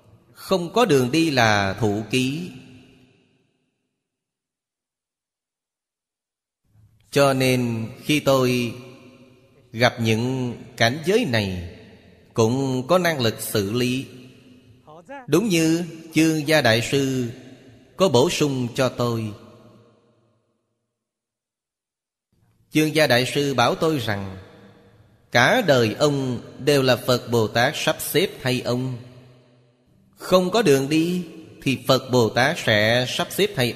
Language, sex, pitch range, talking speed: Vietnamese, male, 115-140 Hz, 110 wpm